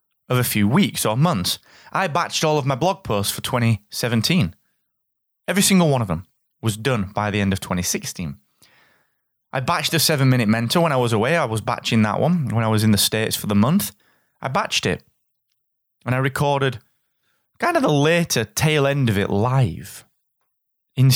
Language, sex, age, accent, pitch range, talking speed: English, male, 20-39, British, 110-155 Hz, 190 wpm